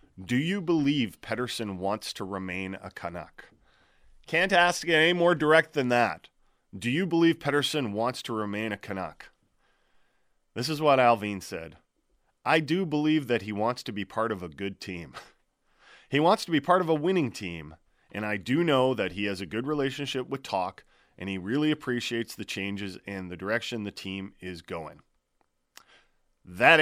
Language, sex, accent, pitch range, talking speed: English, male, American, 100-135 Hz, 175 wpm